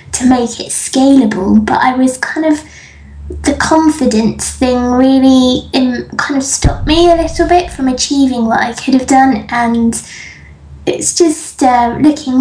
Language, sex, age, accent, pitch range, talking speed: English, female, 20-39, British, 230-275 Hz, 155 wpm